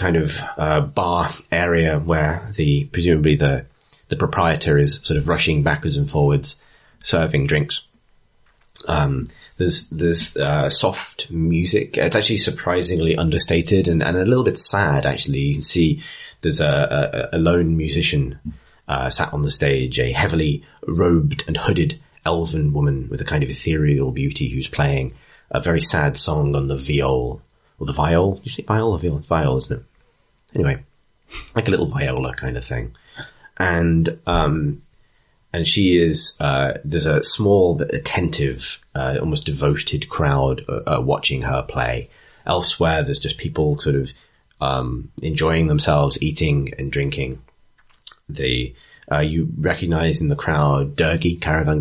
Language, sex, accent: English, male, British